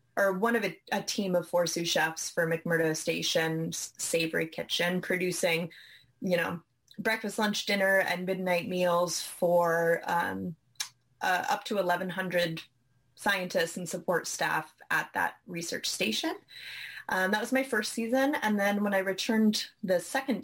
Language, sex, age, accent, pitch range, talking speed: English, female, 20-39, American, 170-200 Hz, 150 wpm